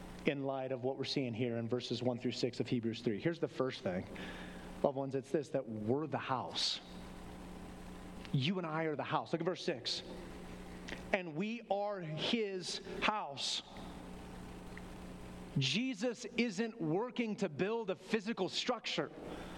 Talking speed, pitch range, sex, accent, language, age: 155 wpm, 145-220 Hz, male, American, English, 30-49